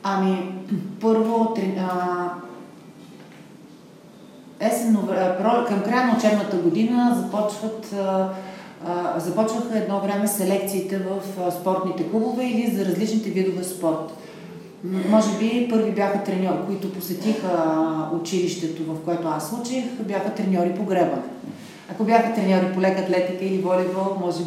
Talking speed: 125 wpm